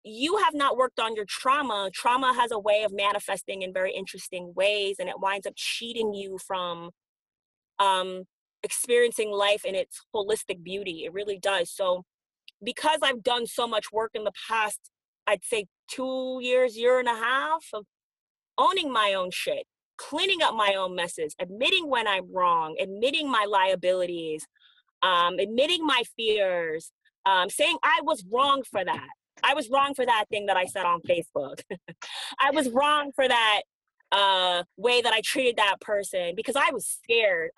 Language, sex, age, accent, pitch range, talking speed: English, female, 30-49, American, 200-280 Hz, 170 wpm